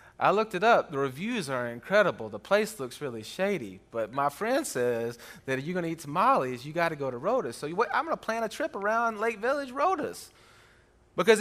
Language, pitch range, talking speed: English, 125-185 Hz, 220 wpm